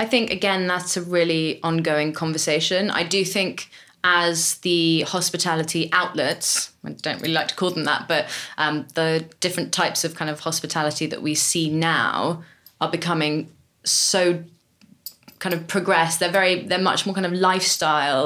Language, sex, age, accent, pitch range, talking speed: English, female, 20-39, British, 150-175 Hz, 165 wpm